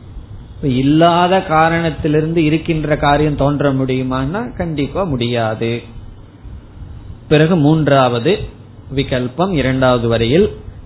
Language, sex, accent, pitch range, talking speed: Tamil, male, native, 115-160 Hz, 75 wpm